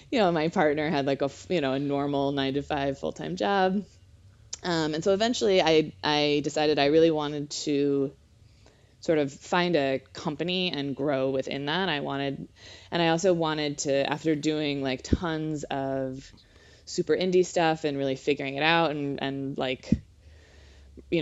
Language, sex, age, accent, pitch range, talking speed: English, female, 20-39, American, 135-160 Hz, 175 wpm